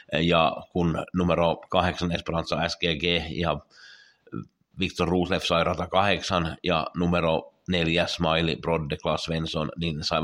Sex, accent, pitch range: male, native, 85-95 Hz